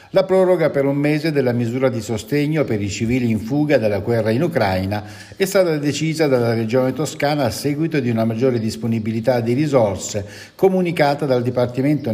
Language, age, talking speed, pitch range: Italian, 60-79, 175 wpm, 110-145 Hz